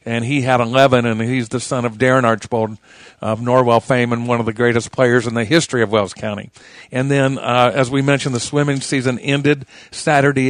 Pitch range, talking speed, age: 120-145 Hz, 210 wpm, 50-69